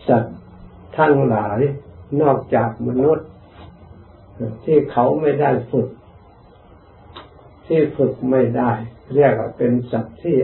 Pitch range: 110-135 Hz